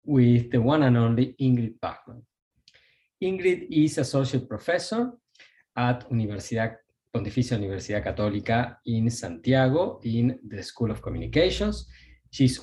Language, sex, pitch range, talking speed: English, male, 120-170 Hz, 115 wpm